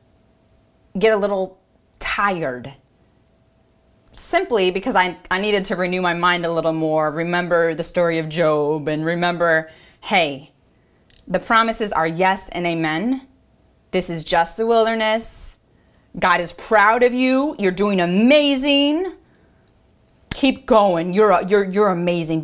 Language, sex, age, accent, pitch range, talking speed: English, female, 20-39, American, 165-220 Hz, 130 wpm